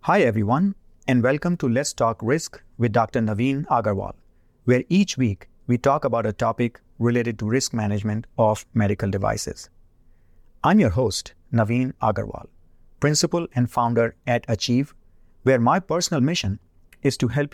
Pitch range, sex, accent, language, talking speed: 100-130 Hz, male, Indian, English, 150 wpm